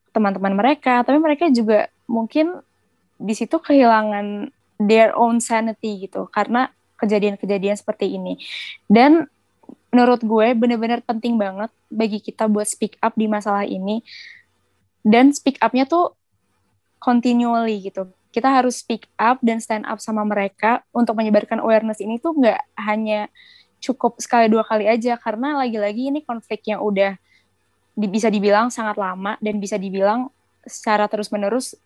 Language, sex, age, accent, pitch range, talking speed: Indonesian, female, 20-39, native, 205-235 Hz, 135 wpm